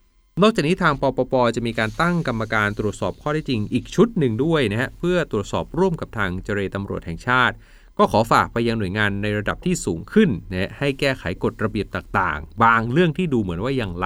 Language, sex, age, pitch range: Thai, male, 30-49, 95-135 Hz